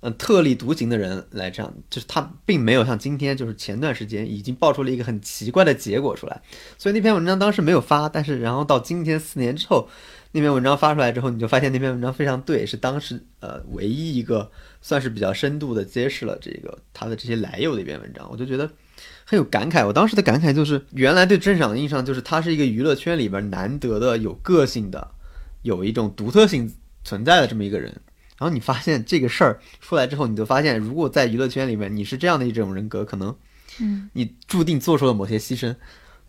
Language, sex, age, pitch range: Chinese, male, 20-39, 110-150 Hz